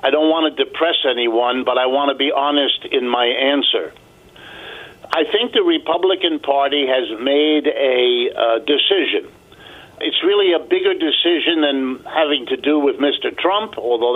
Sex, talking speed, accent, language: male, 160 wpm, American, English